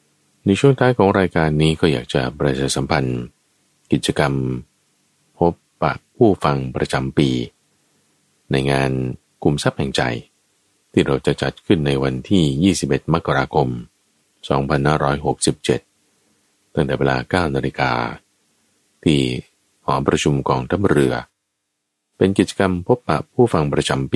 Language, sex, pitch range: Thai, male, 65-80 Hz